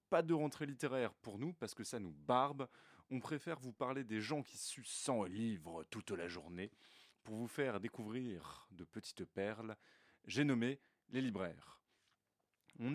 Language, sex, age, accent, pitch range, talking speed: French, male, 20-39, French, 110-145 Hz, 165 wpm